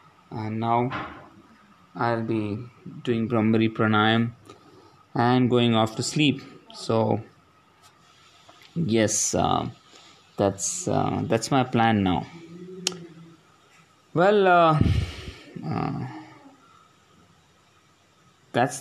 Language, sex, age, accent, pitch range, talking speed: English, male, 20-39, Indian, 110-135 Hz, 80 wpm